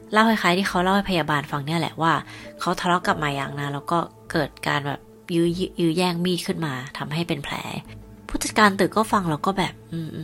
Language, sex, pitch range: Thai, female, 145-195 Hz